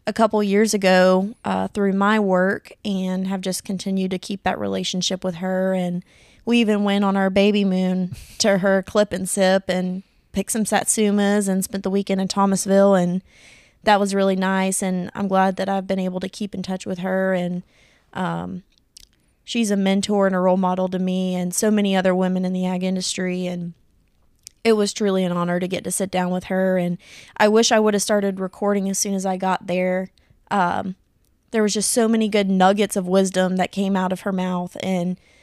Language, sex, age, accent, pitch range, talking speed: English, female, 20-39, American, 185-200 Hz, 210 wpm